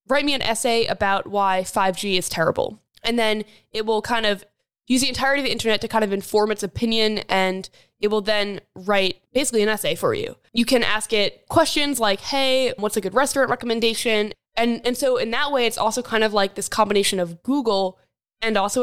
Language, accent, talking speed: English, American, 210 wpm